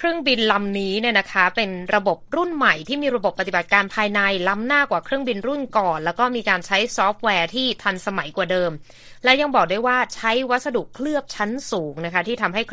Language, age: Thai, 20-39